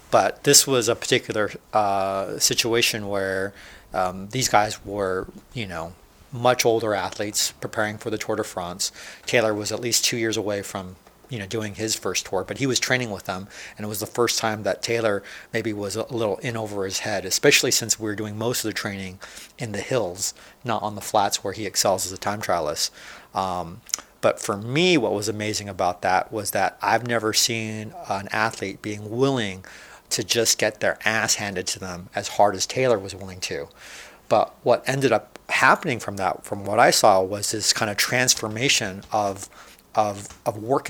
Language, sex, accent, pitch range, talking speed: English, male, American, 100-120 Hz, 195 wpm